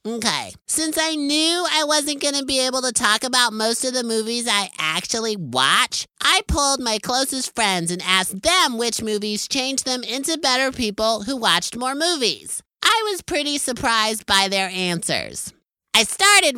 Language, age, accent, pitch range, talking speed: English, 30-49, American, 195-265 Hz, 175 wpm